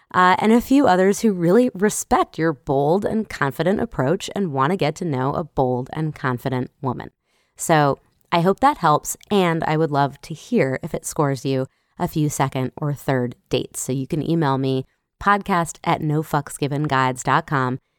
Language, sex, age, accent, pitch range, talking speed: English, female, 20-39, American, 135-180 Hz, 175 wpm